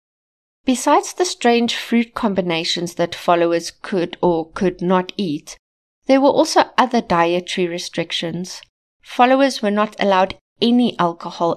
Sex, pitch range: female, 175-230 Hz